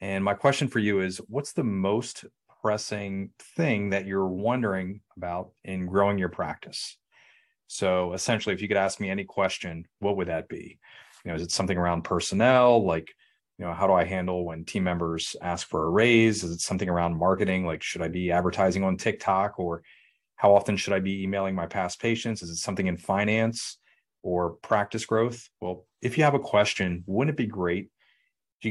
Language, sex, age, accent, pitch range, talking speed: English, male, 30-49, American, 90-110 Hz, 195 wpm